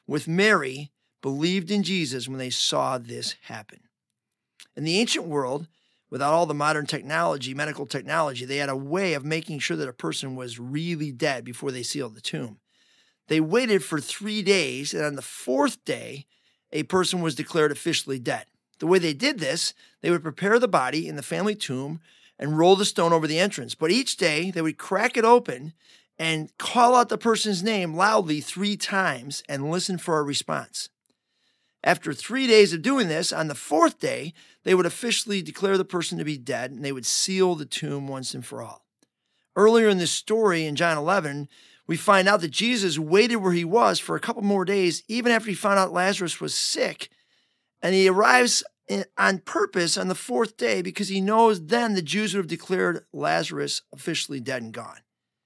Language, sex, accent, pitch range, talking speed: English, male, American, 150-205 Hz, 195 wpm